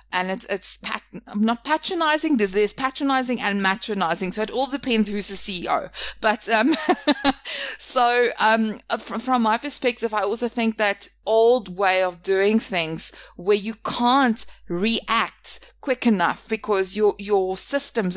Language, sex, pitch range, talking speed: English, female, 185-230 Hz, 145 wpm